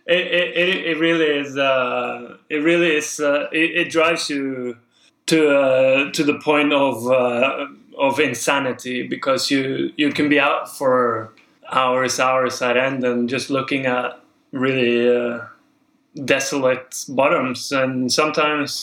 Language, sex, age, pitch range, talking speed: English, male, 20-39, 125-150 Hz, 140 wpm